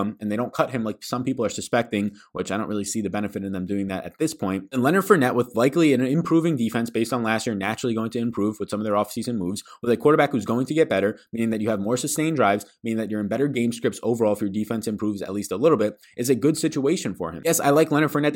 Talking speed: 290 wpm